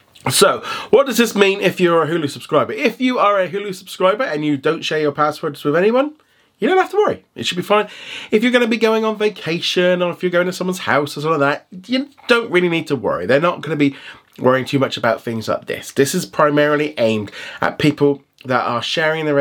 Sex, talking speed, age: male, 245 wpm, 30-49